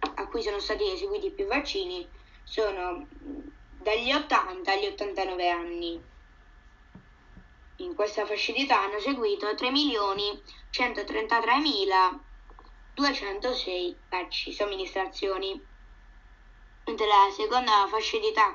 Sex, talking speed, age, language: female, 95 wpm, 10-29, Italian